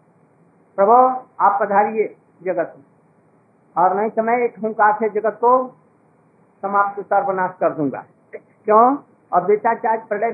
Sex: male